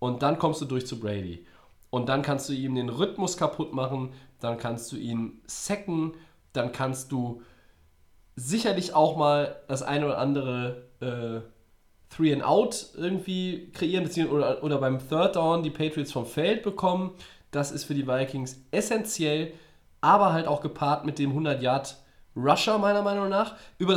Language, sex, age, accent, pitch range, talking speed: German, male, 20-39, German, 125-165 Hz, 165 wpm